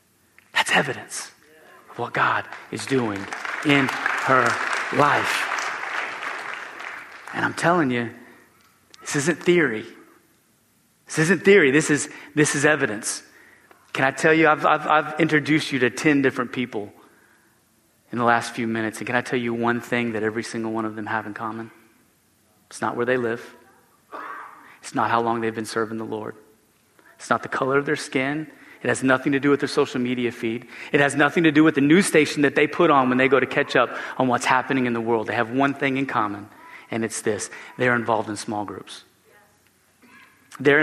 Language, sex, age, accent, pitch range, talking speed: English, male, 30-49, American, 115-145 Hz, 190 wpm